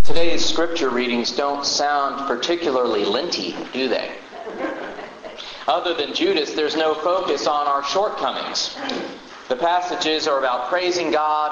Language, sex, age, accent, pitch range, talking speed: English, male, 40-59, American, 140-175 Hz, 125 wpm